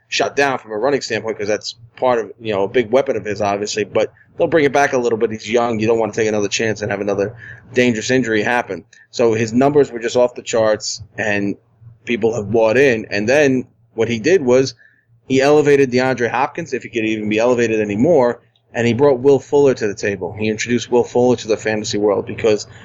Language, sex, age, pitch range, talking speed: English, male, 20-39, 110-130 Hz, 230 wpm